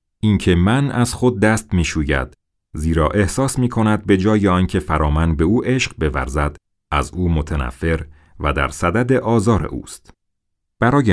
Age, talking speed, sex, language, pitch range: 40-59, 145 wpm, male, Persian, 80-110 Hz